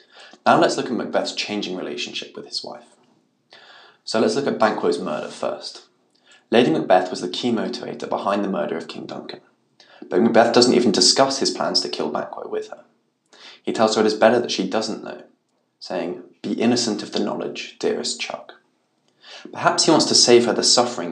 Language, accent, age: English, British, 20-39